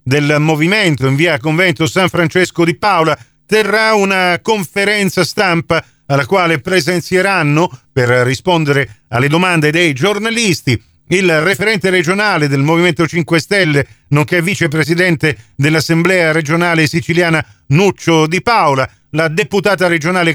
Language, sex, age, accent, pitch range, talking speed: Italian, male, 40-59, native, 140-180 Hz, 120 wpm